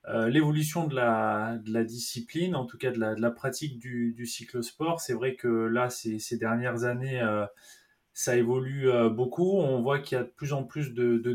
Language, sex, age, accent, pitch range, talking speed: French, male, 20-39, French, 115-140 Hz, 225 wpm